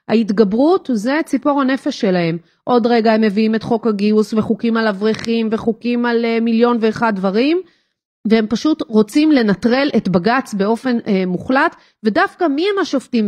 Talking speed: 145 wpm